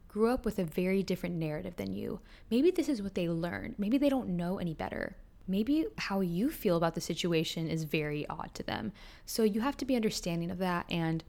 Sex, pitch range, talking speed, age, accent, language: female, 175-220 Hz, 225 wpm, 10-29, American, English